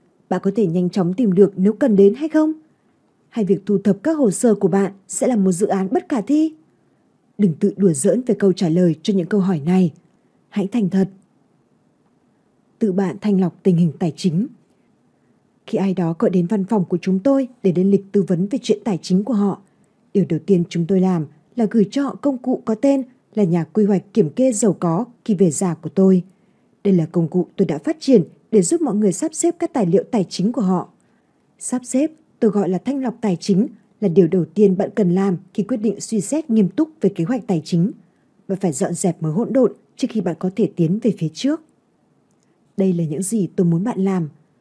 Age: 20-39